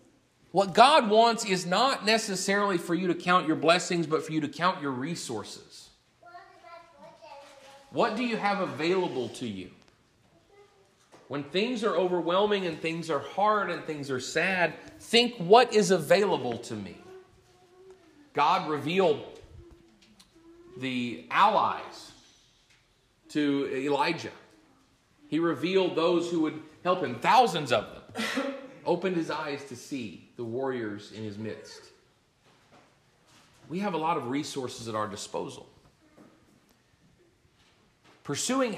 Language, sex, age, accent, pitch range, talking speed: English, male, 40-59, American, 130-205 Hz, 125 wpm